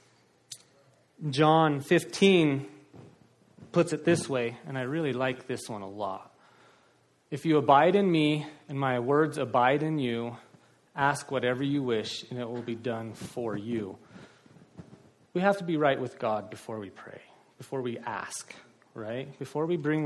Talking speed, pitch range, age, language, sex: 160 wpm, 120-155 Hz, 30-49, English, male